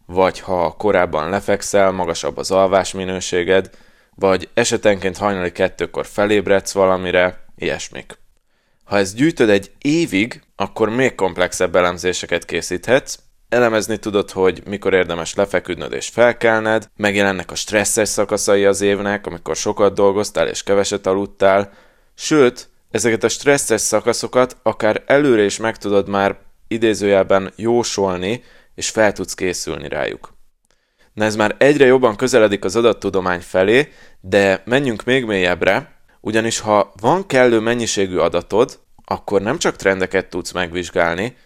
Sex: male